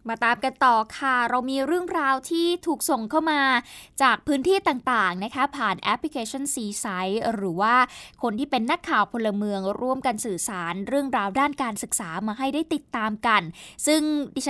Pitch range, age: 225-290 Hz, 20-39